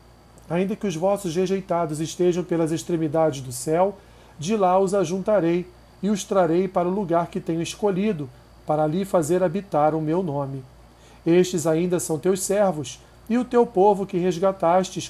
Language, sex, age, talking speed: Portuguese, male, 40-59, 165 wpm